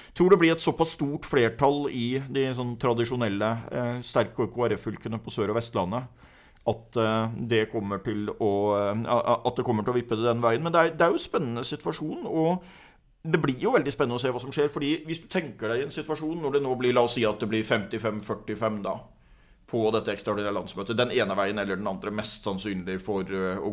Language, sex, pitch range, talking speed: English, male, 105-125 Hz, 215 wpm